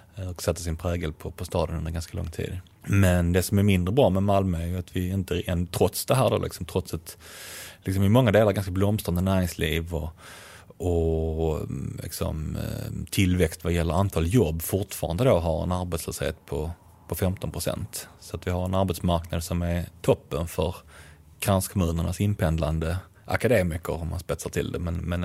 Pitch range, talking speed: 85-95 Hz, 175 wpm